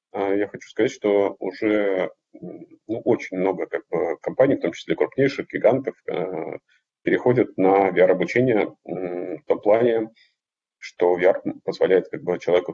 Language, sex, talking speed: Russian, male, 130 wpm